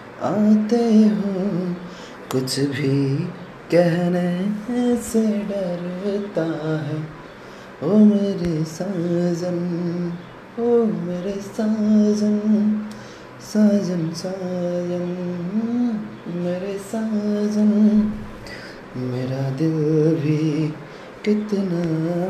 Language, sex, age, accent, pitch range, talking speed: Hindi, male, 30-49, native, 155-210 Hz, 60 wpm